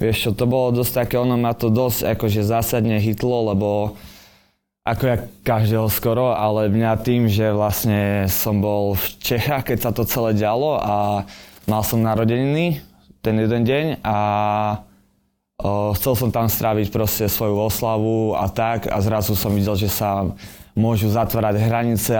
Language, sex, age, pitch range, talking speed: Slovak, male, 20-39, 105-115 Hz, 160 wpm